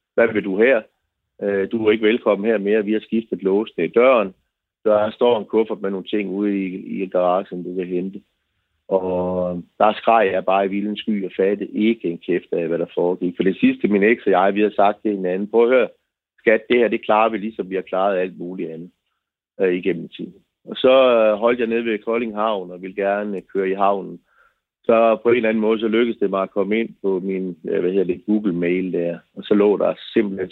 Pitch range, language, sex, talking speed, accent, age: 90-110 Hz, Danish, male, 225 wpm, native, 30-49